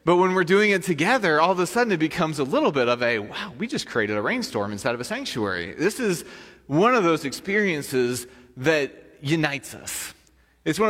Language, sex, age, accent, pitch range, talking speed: English, male, 30-49, American, 125-170 Hz, 210 wpm